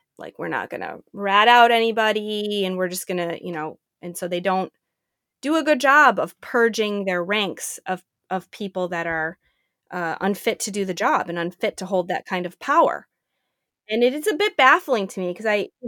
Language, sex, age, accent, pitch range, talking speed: English, female, 20-39, American, 185-245 Hz, 215 wpm